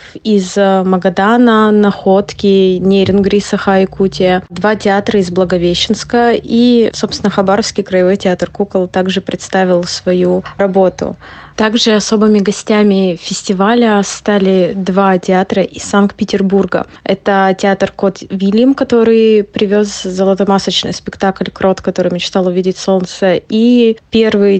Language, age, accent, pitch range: Russian, 20-39, native, 190-210 Hz